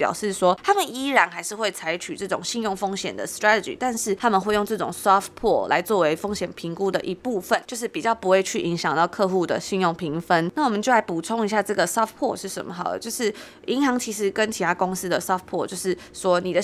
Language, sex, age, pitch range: Chinese, female, 20-39, 180-230 Hz